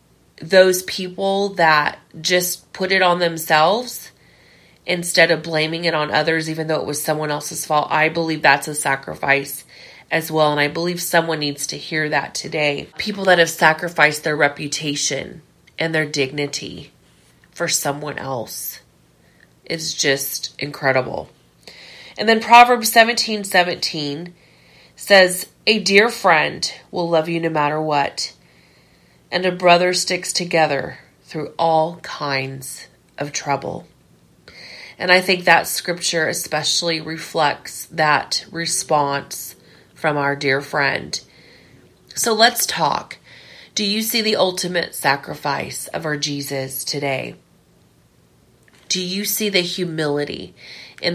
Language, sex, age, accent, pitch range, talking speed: English, female, 30-49, American, 145-180 Hz, 130 wpm